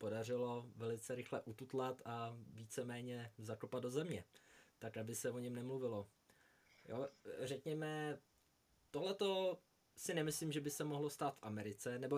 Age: 20-39